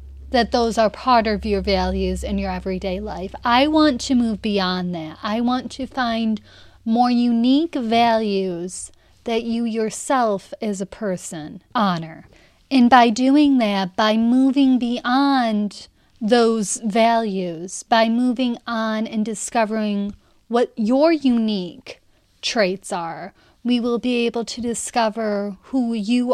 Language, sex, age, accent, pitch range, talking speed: English, female, 30-49, American, 195-245 Hz, 130 wpm